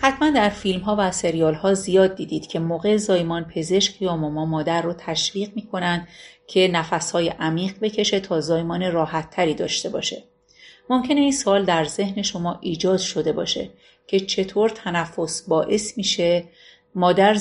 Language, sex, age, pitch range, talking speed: Persian, female, 40-59, 165-200 Hz, 155 wpm